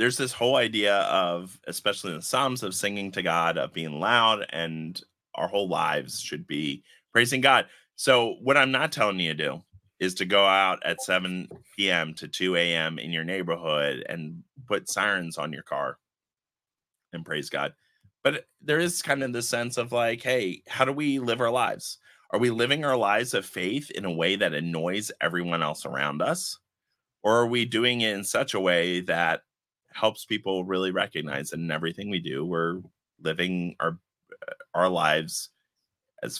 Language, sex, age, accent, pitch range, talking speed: English, male, 30-49, American, 80-115 Hz, 185 wpm